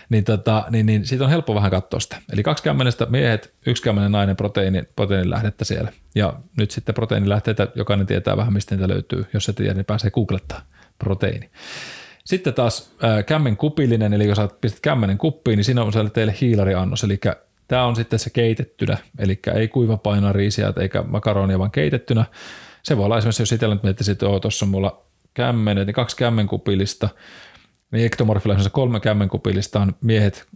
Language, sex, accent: Finnish, male, native